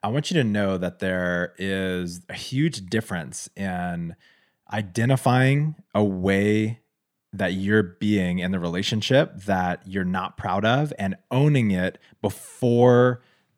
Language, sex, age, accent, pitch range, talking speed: English, male, 20-39, American, 95-120 Hz, 135 wpm